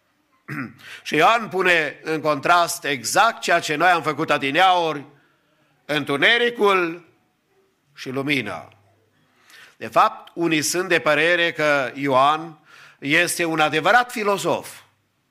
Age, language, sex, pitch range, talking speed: 50-69, English, male, 155-195 Hz, 105 wpm